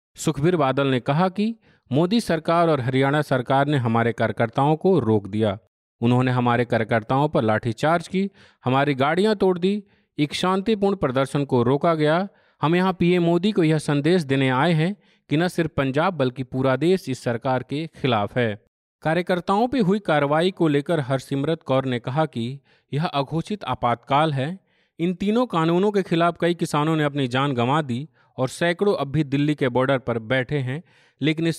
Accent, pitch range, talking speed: native, 130-170 Hz, 175 wpm